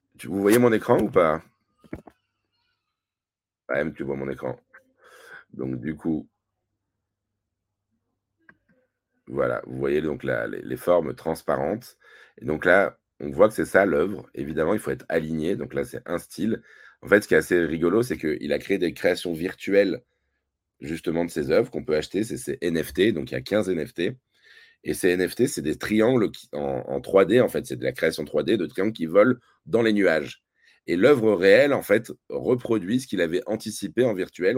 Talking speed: 185 wpm